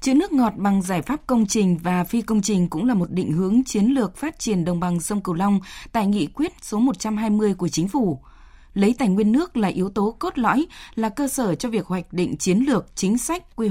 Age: 20-39